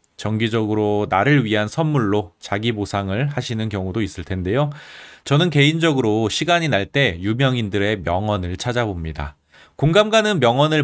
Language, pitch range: Korean, 100-145 Hz